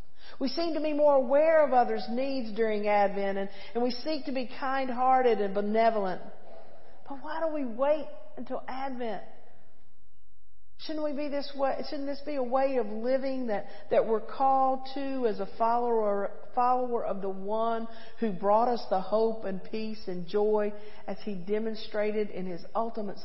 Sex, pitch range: female, 205-270 Hz